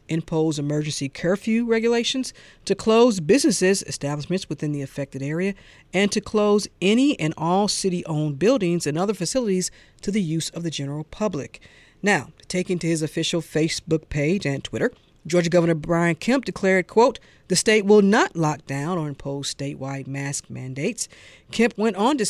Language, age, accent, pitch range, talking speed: English, 40-59, American, 155-205 Hz, 160 wpm